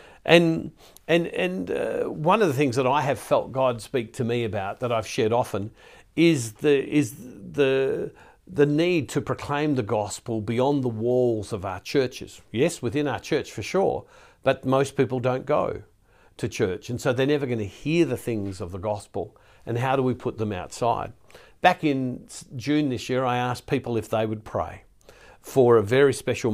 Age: 50-69